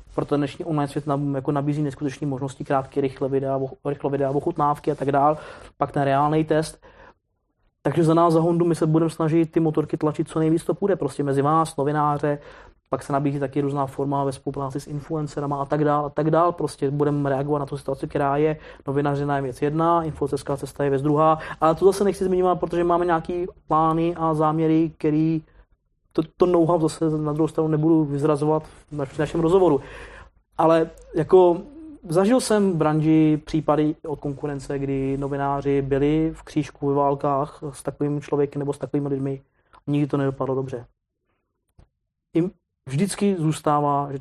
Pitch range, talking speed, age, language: 140-160 Hz, 165 wpm, 20-39, Czech